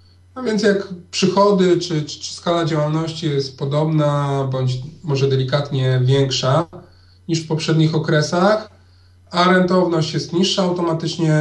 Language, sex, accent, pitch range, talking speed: Polish, male, native, 130-170 Hz, 125 wpm